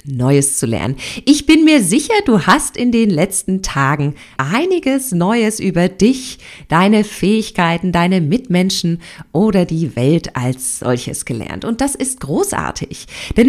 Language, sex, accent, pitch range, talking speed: German, female, German, 150-230 Hz, 140 wpm